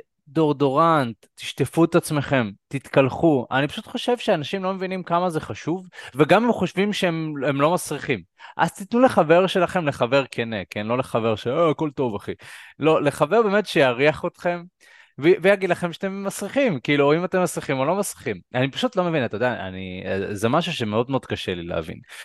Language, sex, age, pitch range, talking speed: Hebrew, male, 20-39, 120-170 Hz, 180 wpm